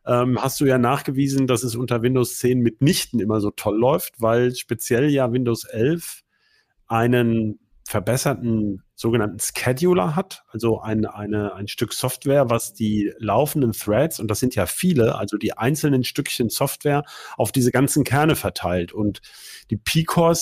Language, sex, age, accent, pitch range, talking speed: German, male, 40-59, German, 115-150 Hz, 155 wpm